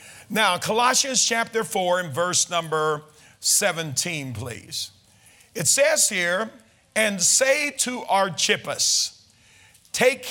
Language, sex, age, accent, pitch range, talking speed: English, male, 50-69, American, 125-190 Hz, 100 wpm